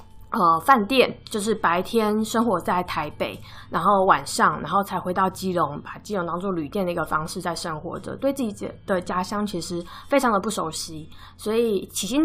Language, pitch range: Chinese, 180-235 Hz